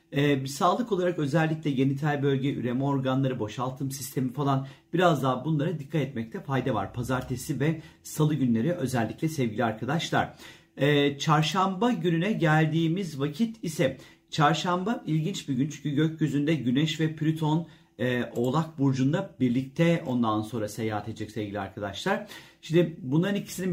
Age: 40-59